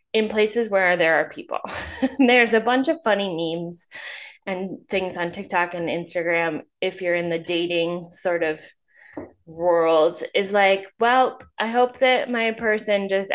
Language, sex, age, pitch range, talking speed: English, female, 10-29, 170-235 Hz, 155 wpm